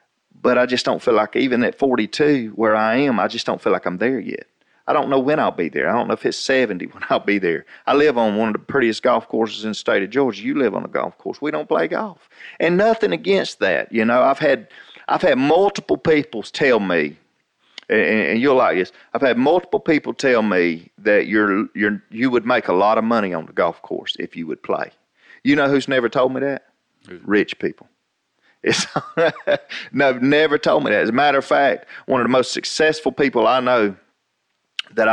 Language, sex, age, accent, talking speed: English, male, 40-59, American, 225 wpm